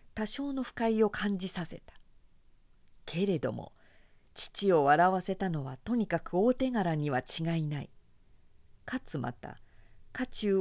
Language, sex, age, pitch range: Japanese, female, 50-69, 150-210 Hz